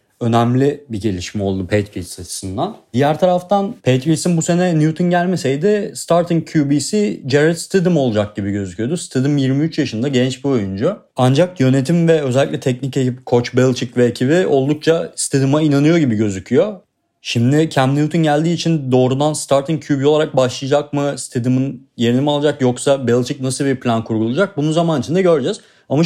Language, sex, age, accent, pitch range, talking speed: Turkish, male, 40-59, native, 120-155 Hz, 155 wpm